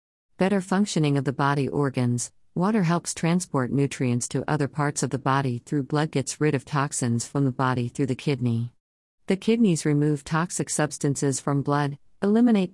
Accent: American